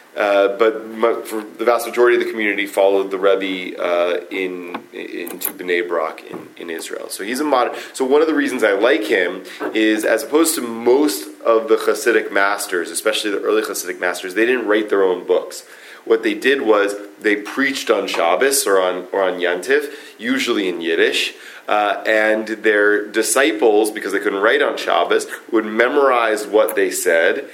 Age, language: 30-49, English